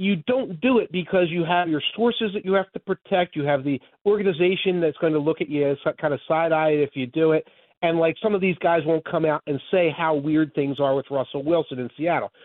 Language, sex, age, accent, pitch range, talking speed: English, male, 40-59, American, 160-210 Hz, 250 wpm